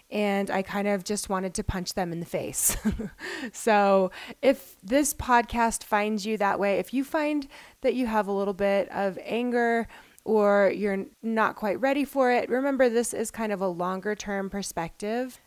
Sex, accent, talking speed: female, American, 180 wpm